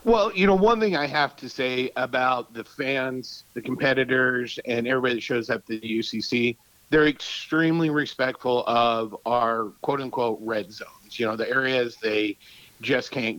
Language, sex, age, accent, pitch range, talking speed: English, male, 50-69, American, 110-135 Hz, 170 wpm